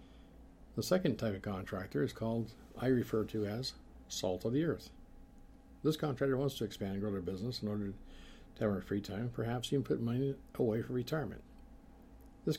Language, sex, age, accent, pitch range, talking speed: English, male, 50-69, American, 105-125 Hz, 185 wpm